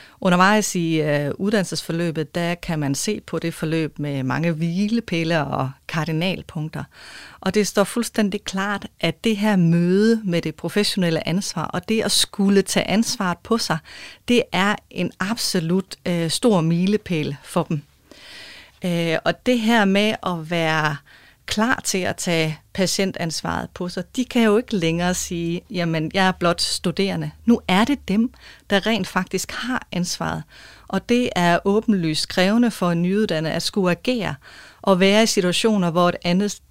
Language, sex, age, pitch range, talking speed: Danish, female, 30-49, 165-210 Hz, 160 wpm